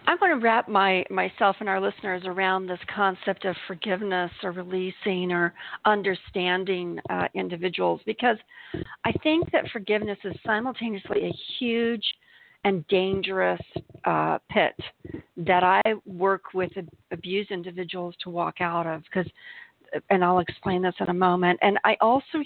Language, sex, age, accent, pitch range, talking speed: English, female, 50-69, American, 180-210 Hz, 145 wpm